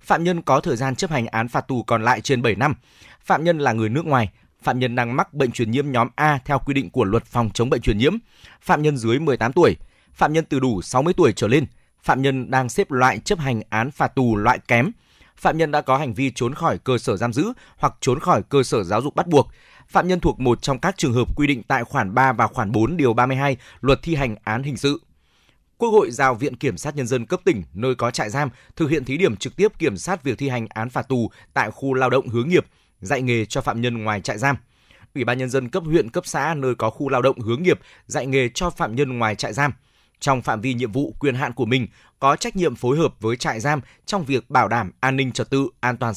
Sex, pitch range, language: male, 120-145 Hz, Vietnamese